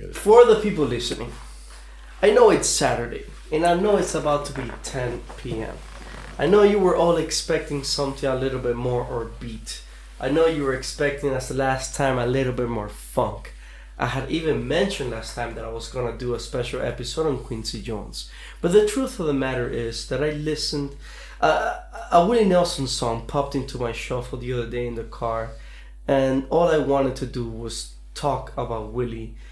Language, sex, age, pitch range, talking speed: English, male, 20-39, 120-145 Hz, 195 wpm